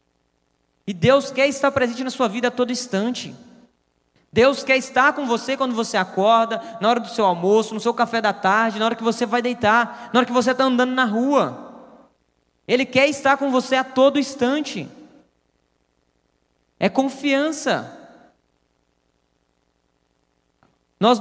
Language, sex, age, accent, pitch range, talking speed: Portuguese, male, 20-39, Brazilian, 220-285 Hz, 155 wpm